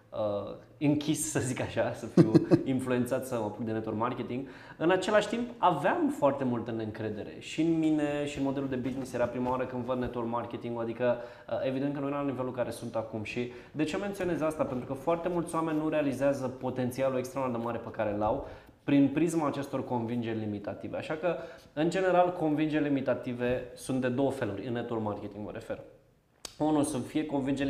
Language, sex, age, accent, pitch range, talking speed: Romanian, male, 20-39, native, 120-145 Hz, 190 wpm